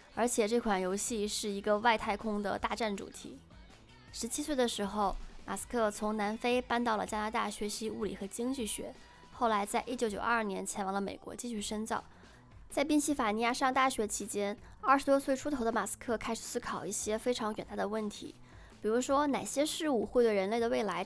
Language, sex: Chinese, female